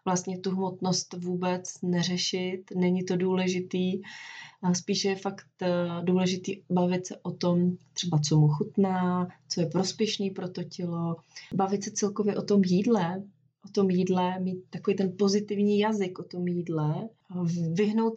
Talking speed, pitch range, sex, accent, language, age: 145 wpm, 165-190 Hz, female, native, Czech, 20-39